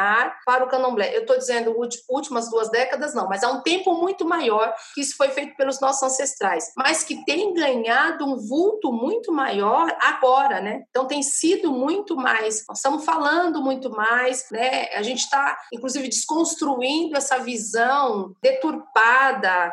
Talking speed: 160 wpm